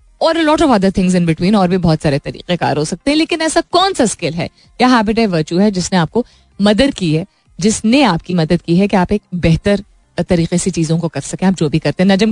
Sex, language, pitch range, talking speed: female, Hindi, 180-235 Hz, 255 wpm